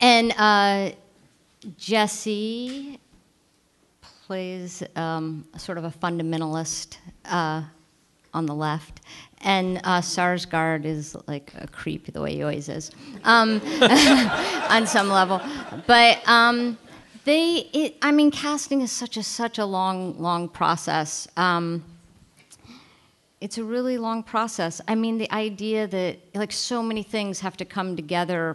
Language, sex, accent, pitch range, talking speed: English, female, American, 160-220 Hz, 130 wpm